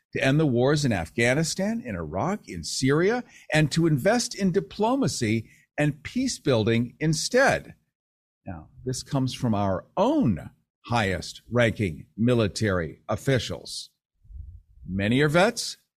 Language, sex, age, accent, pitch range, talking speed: English, male, 50-69, American, 100-145 Hz, 115 wpm